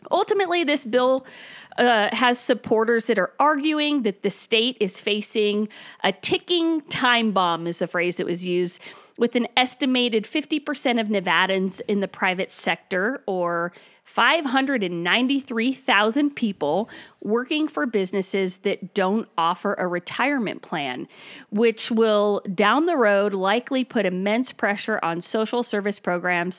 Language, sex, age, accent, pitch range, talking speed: English, female, 40-59, American, 185-250 Hz, 135 wpm